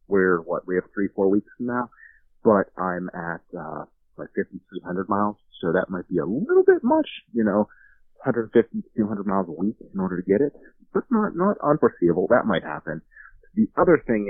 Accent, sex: American, male